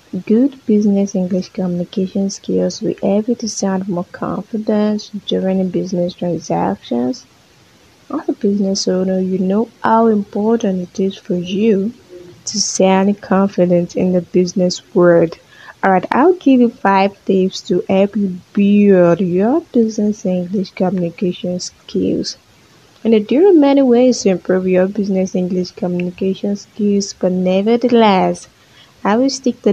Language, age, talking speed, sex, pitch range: English, 20-39, 135 wpm, female, 185-225 Hz